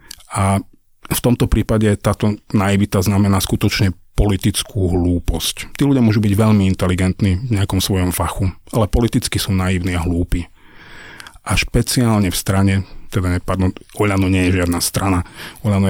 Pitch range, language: 95-110 Hz, Slovak